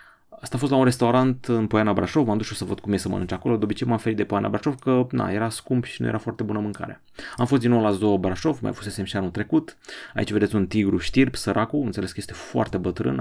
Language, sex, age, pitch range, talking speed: Romanian, male, 30-49, 100-120 Hz, 270 wpm